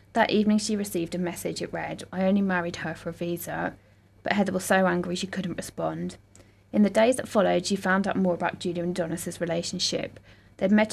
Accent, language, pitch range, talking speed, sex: British, English, 160-195 Hz, 215 wpm, female